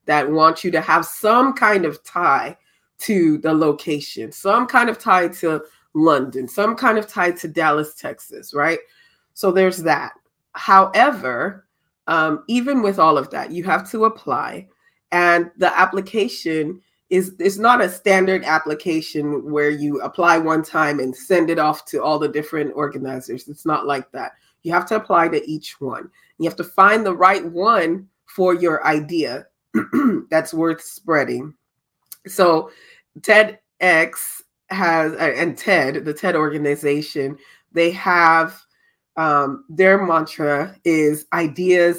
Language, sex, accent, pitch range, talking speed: English, female, American, 155-195 Hz, 145 wpm